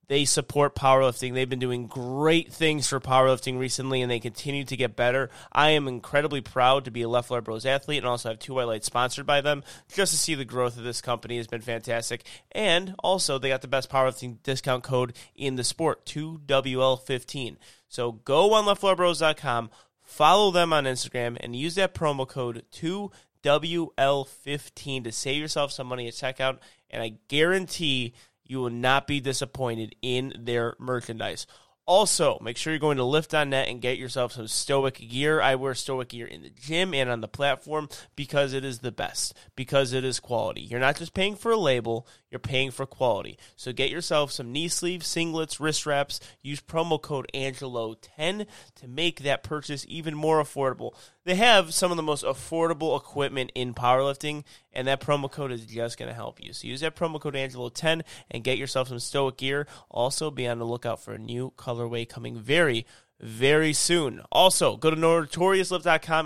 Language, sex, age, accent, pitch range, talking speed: English, male, 30-49, American, 125-155 Hz, 185 wpm